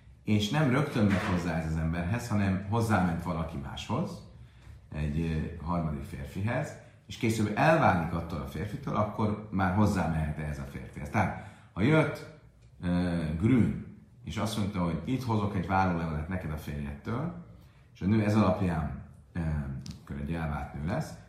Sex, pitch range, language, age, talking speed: male, 85-115 Hz, Hungarian, 40-59, 150 wpm